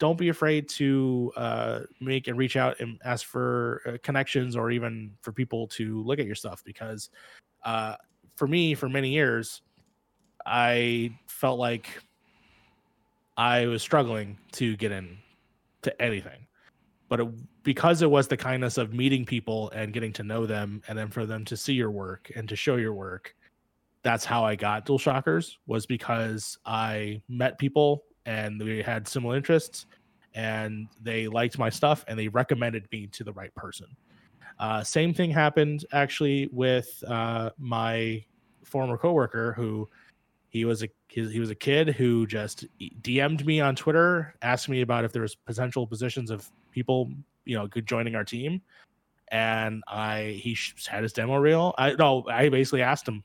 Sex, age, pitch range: male, 20-39, 110-135 Hz